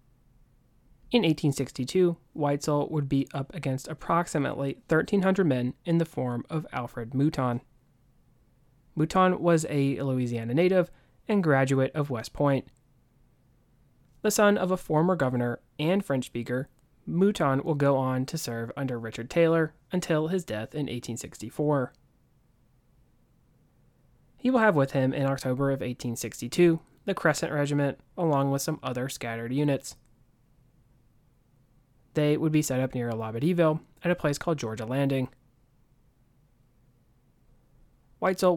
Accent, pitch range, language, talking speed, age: American, 125-155 Hz, English, 125 wpm, 30-49